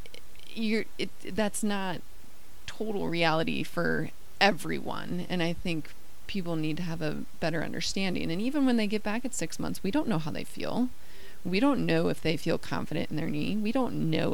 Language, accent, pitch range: English, American, 160-200 Hz